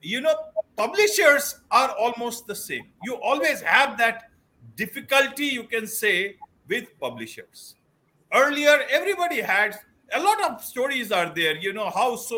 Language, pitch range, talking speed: English, 200-275 Hz, 145 wpm